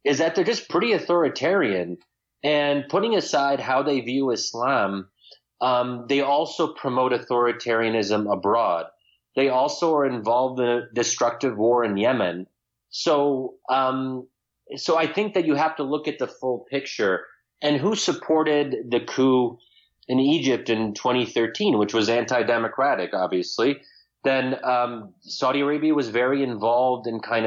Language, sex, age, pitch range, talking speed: English, male, 30-49, 110-135 Hz, 140 wpm